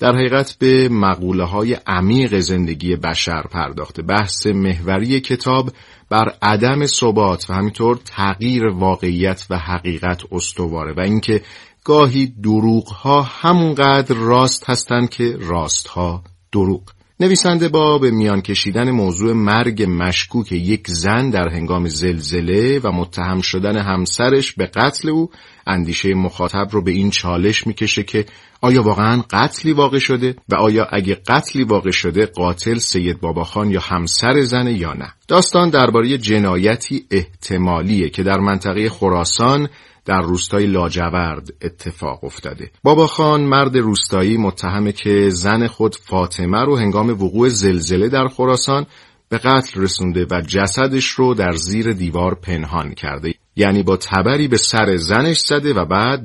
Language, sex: Persian, male